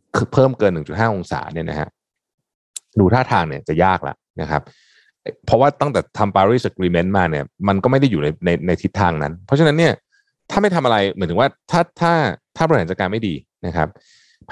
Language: Thai